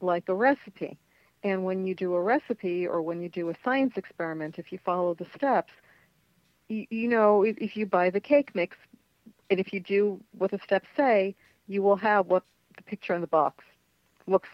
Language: English